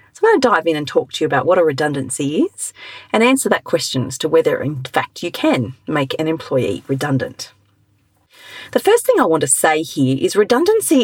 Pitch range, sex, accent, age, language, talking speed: 155-250 Hz, female, Australian, 40-59, English, 215 wpm